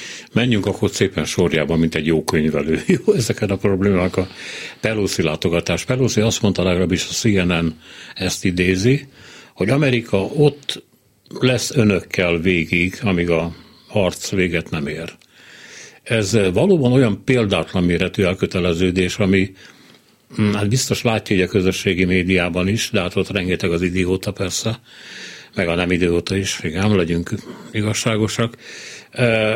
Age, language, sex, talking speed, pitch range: 60-79, Hungarian, male, 140 wpm, 90-110 Hz